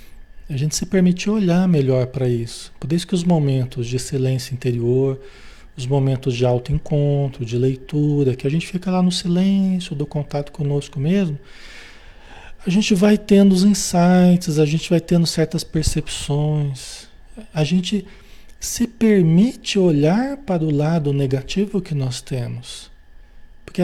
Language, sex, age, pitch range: Portuguese, male, 40-59, 135-185 Hz